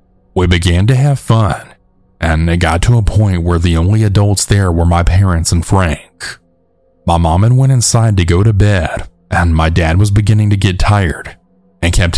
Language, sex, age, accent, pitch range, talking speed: English, male, 30-49, American, 85-105 Hz, 195 wpm